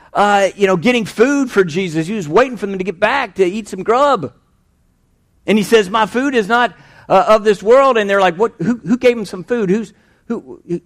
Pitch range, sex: 160-205 Hz, male